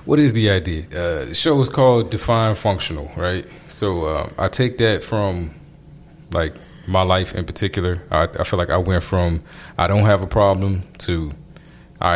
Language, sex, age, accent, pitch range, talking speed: English, male, 20-39, American, 90-115 Hz, 185 wpm